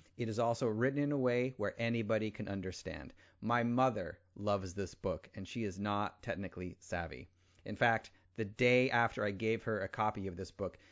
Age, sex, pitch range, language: 30-49, male, 95-125 Hz, English